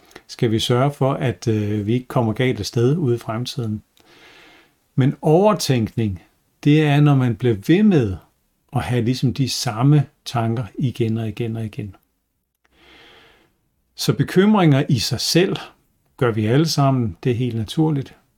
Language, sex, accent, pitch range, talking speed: Danish, male, native, 115-145 Hz, 150 wpm